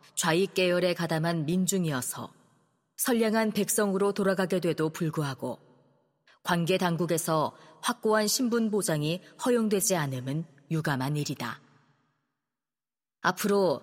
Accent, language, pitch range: native, Korean, 150-205 Hz